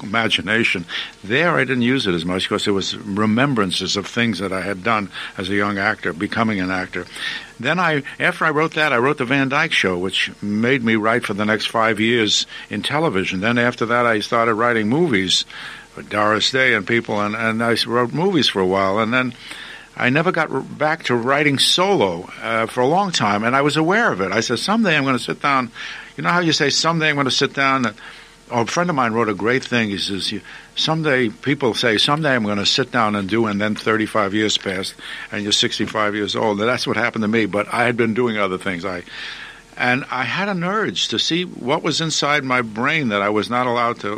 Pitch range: 105-135 Hz